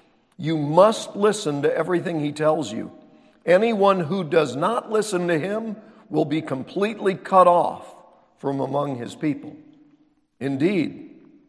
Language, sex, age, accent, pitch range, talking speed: English, male, 50-69, American, 150-220 Hz, 130 wpm